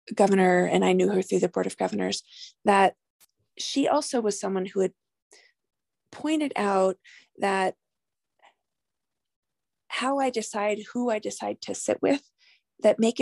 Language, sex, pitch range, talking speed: English, female, 195-315 Hz, 140 wpm